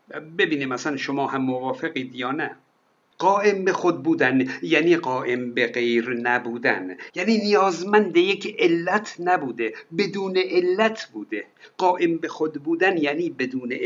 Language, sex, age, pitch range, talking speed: Persian, male, 60-79, 145-215 Hz, 130 wpm